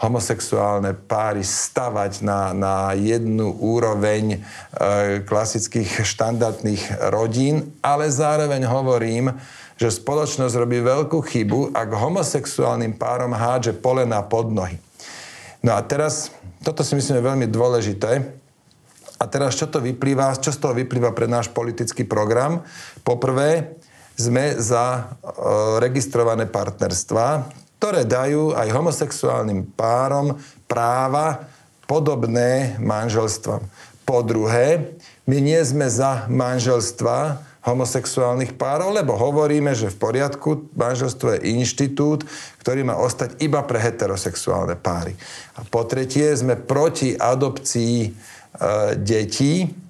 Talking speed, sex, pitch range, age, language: 110 wpm, male, 115-140 Hz, 40-59, Slovak